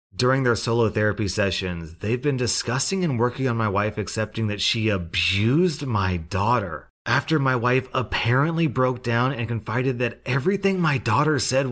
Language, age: English, 30-49